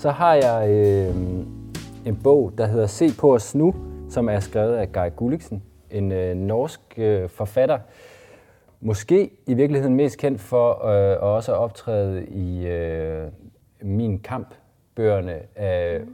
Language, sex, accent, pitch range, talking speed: Danish, male, native, 95-125 Hz, 140 wpm